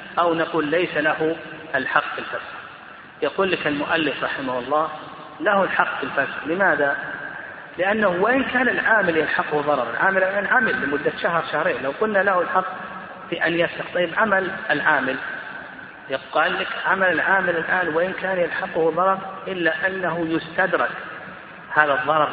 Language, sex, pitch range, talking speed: Arabic, male, 155-200 Hz, 140 wpm